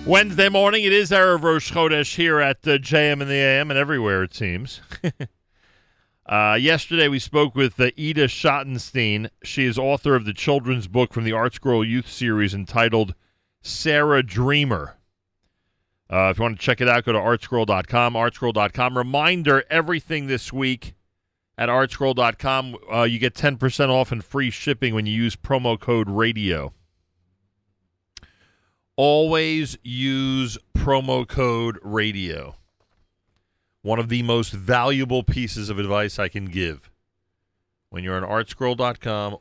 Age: 40-59